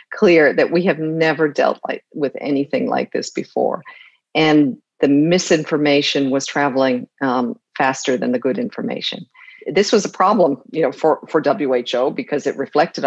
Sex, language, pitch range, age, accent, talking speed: female, English, 145-180 Hz, 50-69, American, 155 wpm